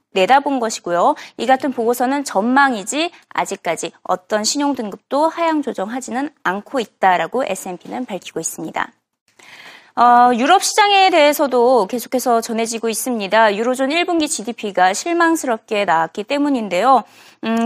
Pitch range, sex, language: 215-305 Hz, female, Korean